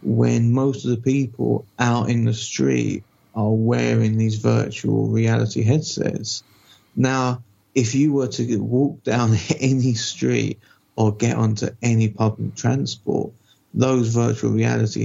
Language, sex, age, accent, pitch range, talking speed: English, male, 30-49, British, 110-125 Hz, 130 wpm